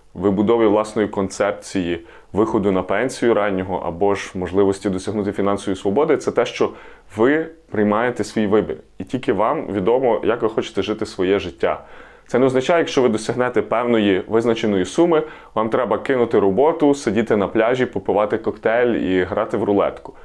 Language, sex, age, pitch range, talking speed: Ukrainian, male, 20-39, 100-140 Hz, 155 wpm